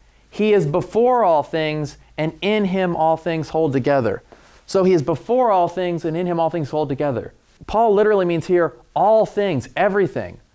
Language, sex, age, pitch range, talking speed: English, male, 30-49, 120-180 Hz, 180 wpm